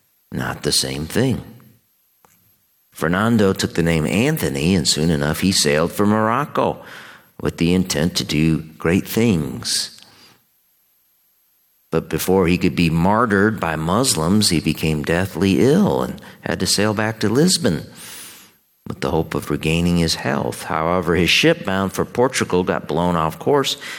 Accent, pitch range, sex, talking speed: American, 70-100 Hz, male, 150 wpm